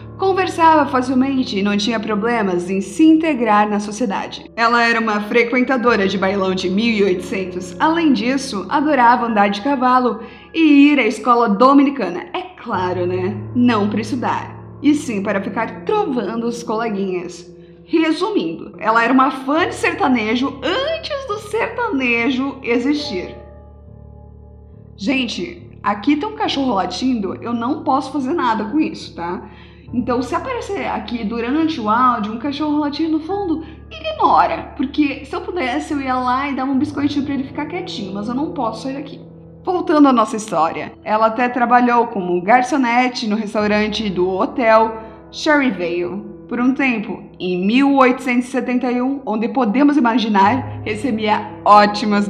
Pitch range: 205-285 Hz